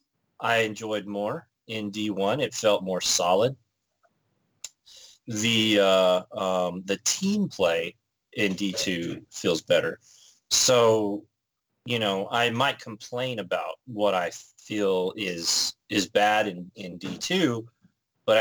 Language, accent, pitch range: English, American, 95-115 Hz